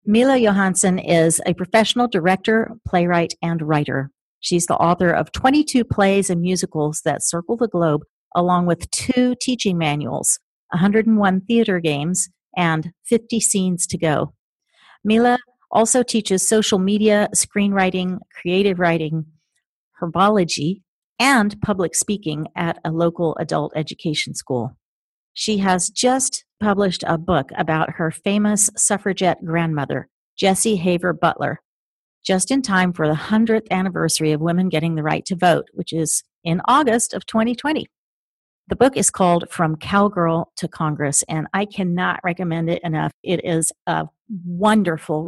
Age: 50-69